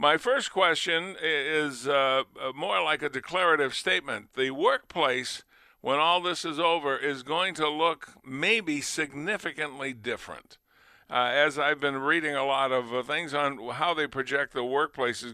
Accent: American